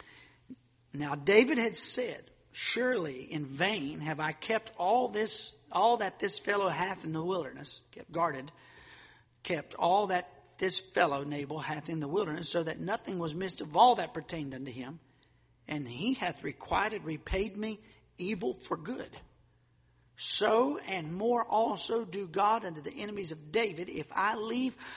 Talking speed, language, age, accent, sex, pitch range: 160 wpm, English, 50-69, American, male, 135-210 Hz